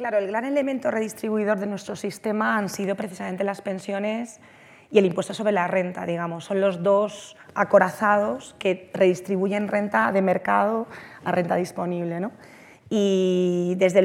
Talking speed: 150 wpm